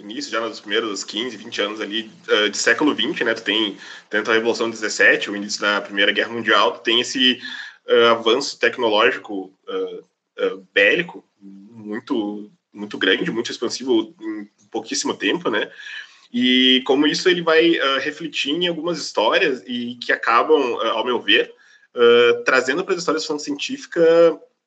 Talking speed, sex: 165 wpm, male